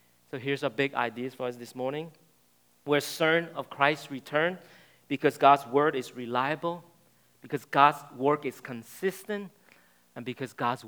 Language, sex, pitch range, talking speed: English, male, 115-160 Hz, 150 wpm